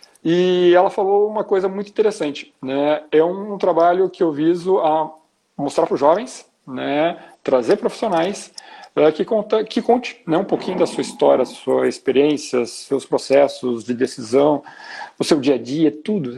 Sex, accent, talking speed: male, Brazilian, 165 wpm